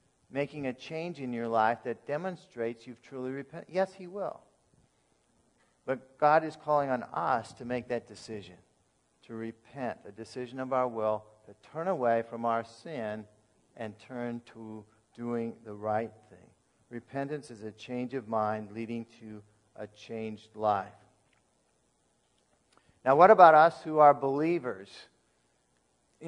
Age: 50-69